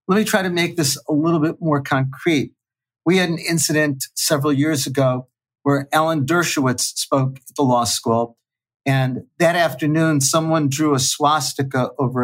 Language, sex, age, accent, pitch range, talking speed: English, male, 50-69, American, 130-160 Hz, 165 wpm